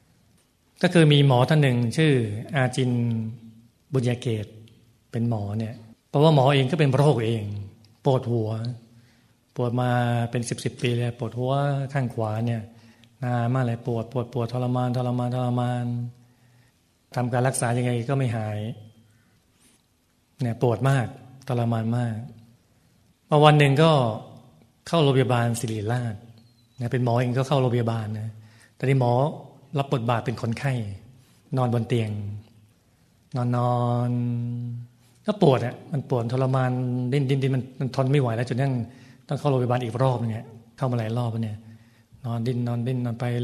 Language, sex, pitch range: Thai, male, 115-130 Hz